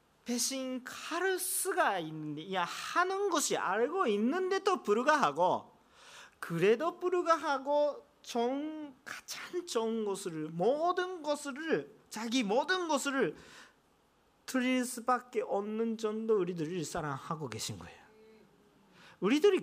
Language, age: Korean, 40-59